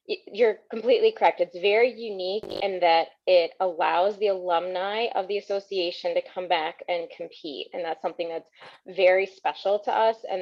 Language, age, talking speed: English, 20-39, 165 wpm